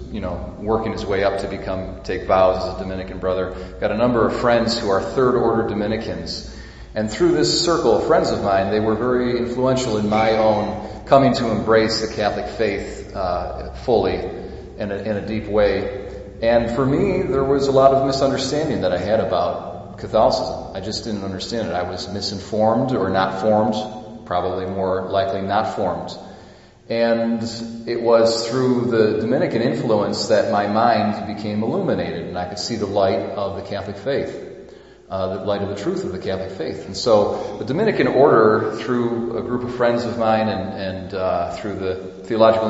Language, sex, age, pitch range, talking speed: English, male, 40-59, 95-115 Hz, 185 wpm